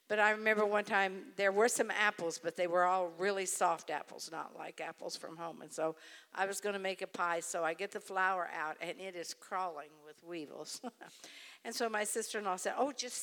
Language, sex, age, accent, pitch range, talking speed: English, female, 60-79, American, 180-235 Hz, 220 wpm